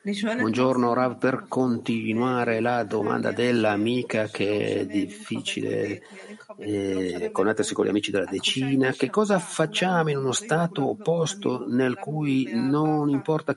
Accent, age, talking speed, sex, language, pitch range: native, 50-69, 125 wpm, male, Italian, 120-155 Hz